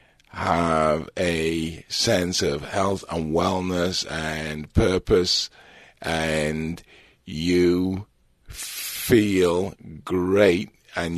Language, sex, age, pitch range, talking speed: English, male, 50-69, 85-105 Hz, 75 wpm